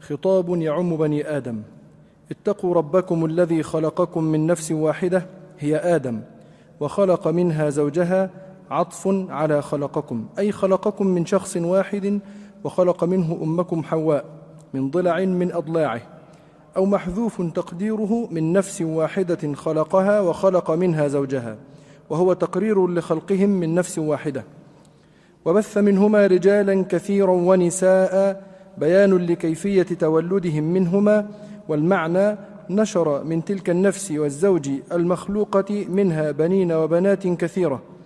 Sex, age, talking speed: male, 40-59, 105 wpm